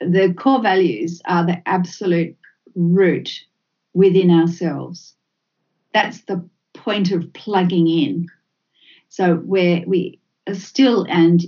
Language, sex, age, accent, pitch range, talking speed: English, female, 50-69, Australian, 175-210 Hz, 110 wpm